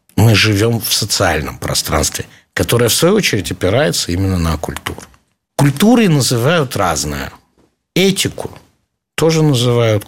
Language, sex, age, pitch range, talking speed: Russian, male, 60-79, 90-130 Hz, 115 wpm